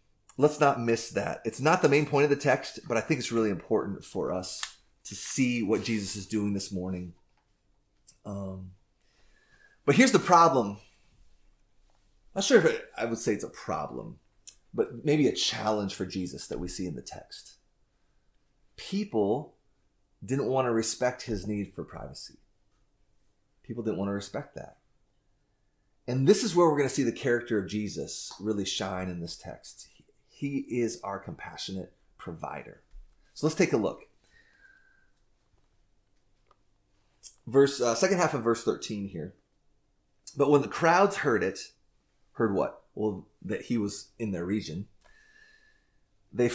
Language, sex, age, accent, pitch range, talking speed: English, male, 30-49, American, 100-140 Hz, 155 wpm